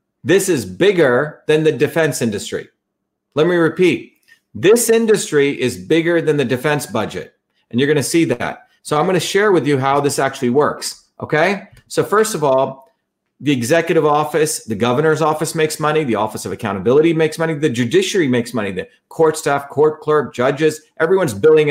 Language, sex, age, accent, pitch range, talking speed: English, male, 40-59, American, 145-180 Hz, 175 wpm